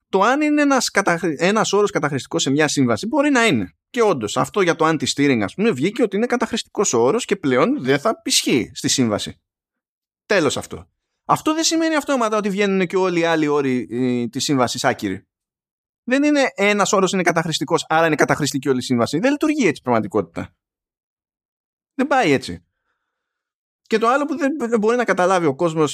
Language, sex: Greek, male